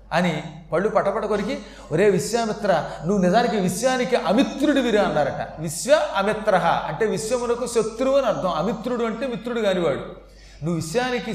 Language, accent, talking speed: Telugu, native, 130 wpm